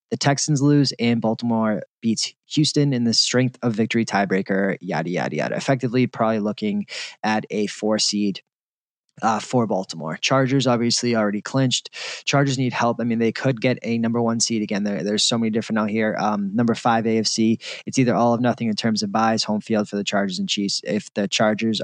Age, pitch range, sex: 20-39, 105-125 Hz, male